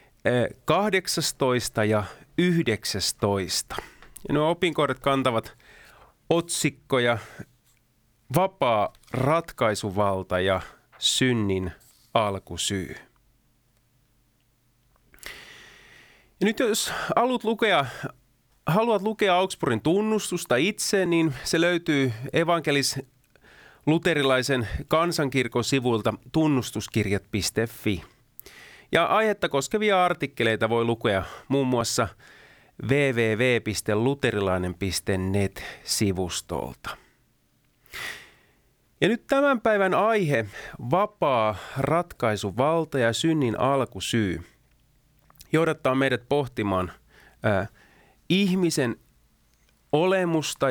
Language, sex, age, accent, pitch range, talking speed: Finnish, male, 30-49, native, 110-160 Hz, 65 wpm